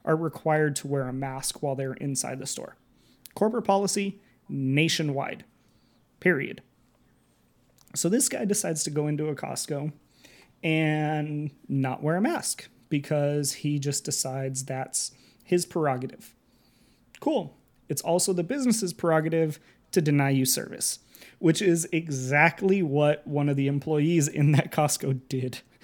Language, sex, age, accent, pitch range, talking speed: English, male, 30-49, American, 140-175 Hz, 135 wpm